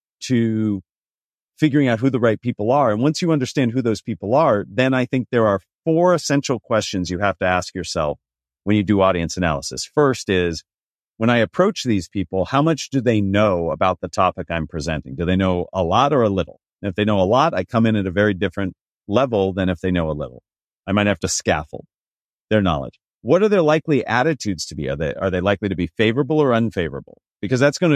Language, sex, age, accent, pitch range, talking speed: English, male, 40-59, American, 95-135 Hz, 225 wpm